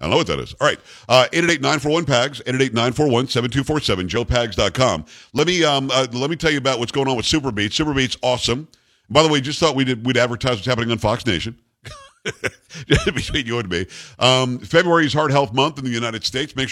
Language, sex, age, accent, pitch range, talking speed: English, male, 50-69, American, 110-140 Hz, 200 wpm